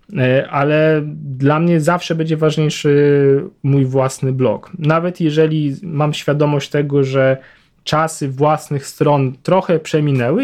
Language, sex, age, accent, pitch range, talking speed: Polish, male, 20-39, native, 130-155 Hz, 115 wpm